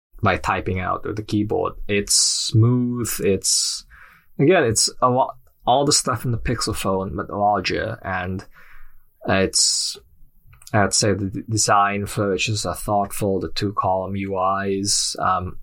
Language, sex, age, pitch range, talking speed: English, male, 20-39, 95-110 Hz, 140 wpm